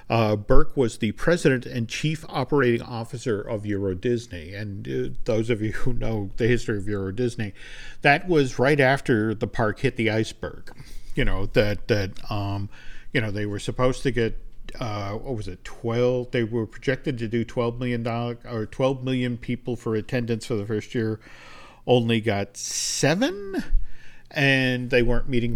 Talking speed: 175 wpm